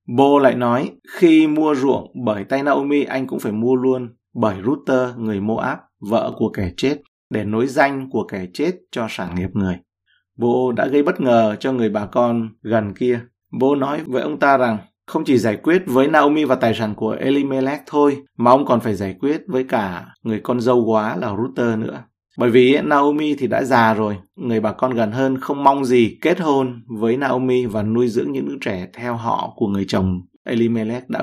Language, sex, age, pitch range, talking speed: Vietnamese, male, 20-39, 110-135 Hz, 210 wpm